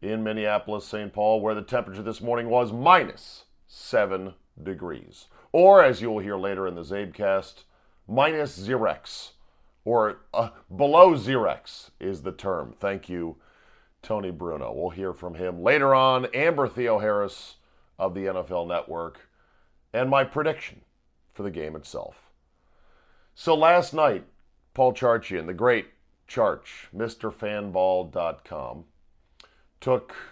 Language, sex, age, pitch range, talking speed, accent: English, male, 40-59, 90-125 Hz, 125 wpm, American